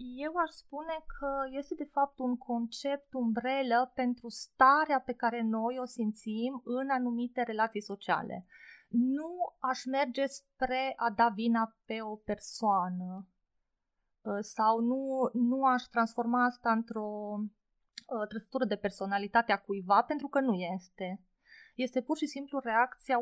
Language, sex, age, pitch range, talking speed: Romanian, female, 20-39, 210-255 Hz, 135 wpm